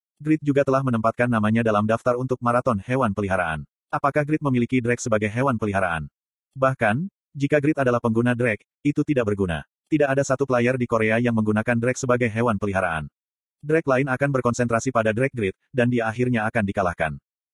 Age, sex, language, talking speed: 30-49, male, Indonesian, 175 wpm